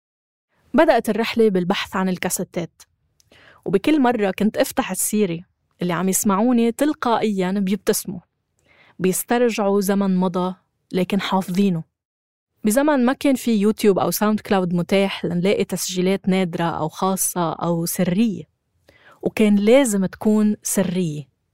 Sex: female